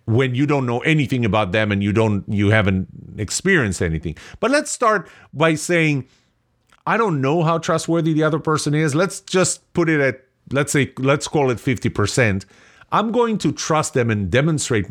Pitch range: 110-170 Hz